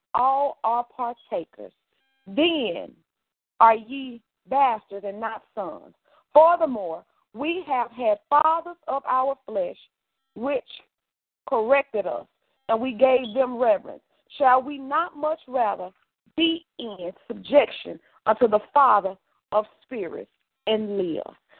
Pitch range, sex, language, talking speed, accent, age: 220-290 Hz, female, English, 115 wpm, American, 40-59